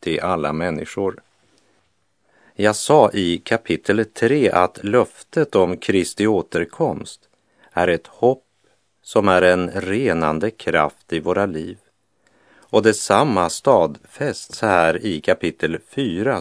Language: Swedish